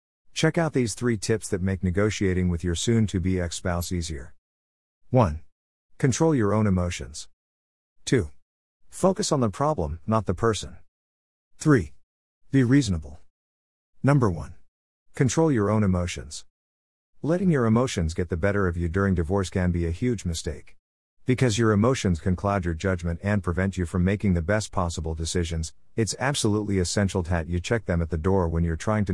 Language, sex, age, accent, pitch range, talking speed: English, male, 50-69, American, 85-110 Hz, 165 wpm